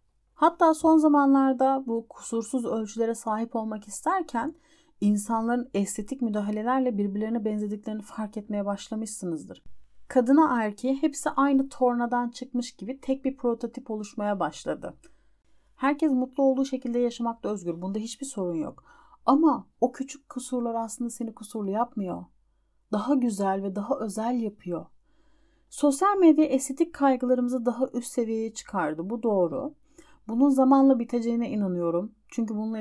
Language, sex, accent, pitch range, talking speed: Turkish, female, native, 215-275 Hz, 125 wpm